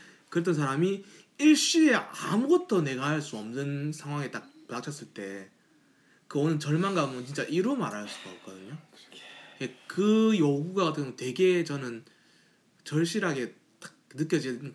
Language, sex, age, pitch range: Korean, male, 20-39, 125-200 Hz